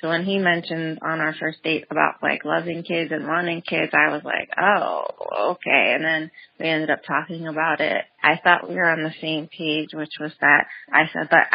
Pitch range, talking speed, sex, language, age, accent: 155-175 Hz, 220 wpm, female, English, 20-39, American